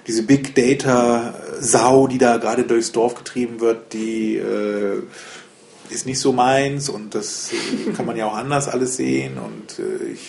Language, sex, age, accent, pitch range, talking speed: German, male, 30-49, German, 115-145 Hz, 165 wpm